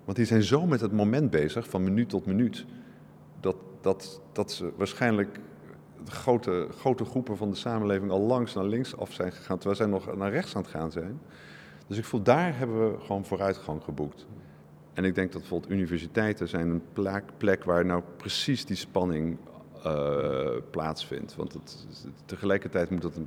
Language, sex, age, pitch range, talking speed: Dutch, male, 50-69, 85-115 Hz, 185 wpm